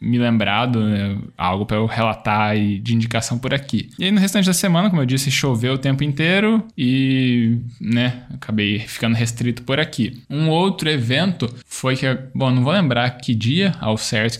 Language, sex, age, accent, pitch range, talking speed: Portuguese, male, 10-29, Brazilian, 110-140 Hz, 190 wpm